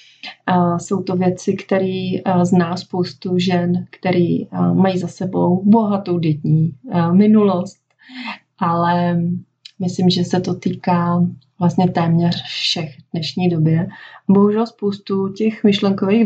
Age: 30-49